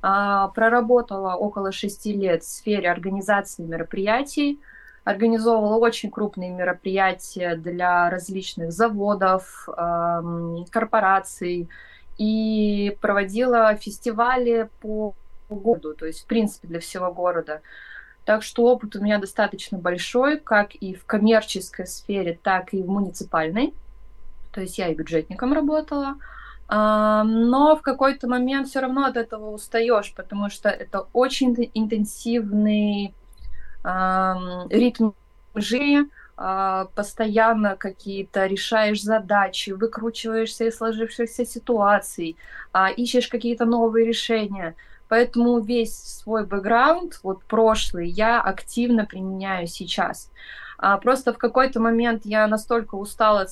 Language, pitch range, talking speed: Russian, 190-230 Hz, 115 wpm